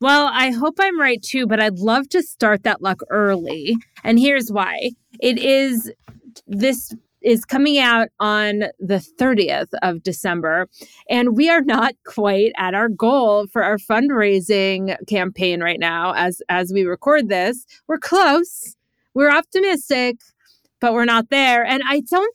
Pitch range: 190-235 Hz